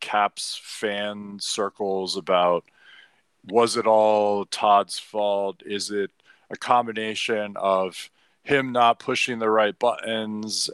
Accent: American